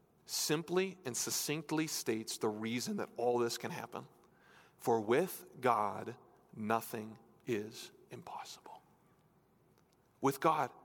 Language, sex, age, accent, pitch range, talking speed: English, male, 40-59, American, 120-170 Hz, 105 wpm